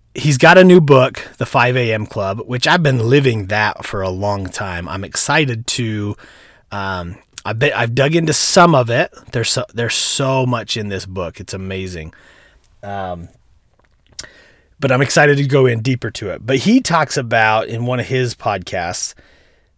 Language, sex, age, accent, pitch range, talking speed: English, male, 30-49, American, 100-140 Hz, 175 wpm